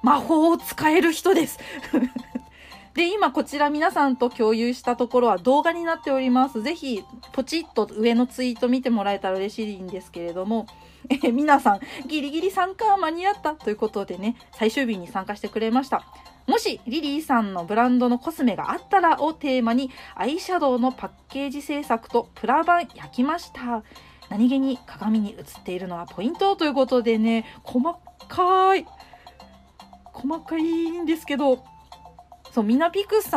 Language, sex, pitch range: Japanese, female, 220-320 Hz